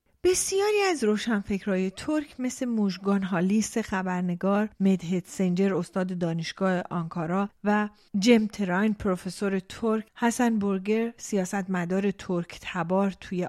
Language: Persian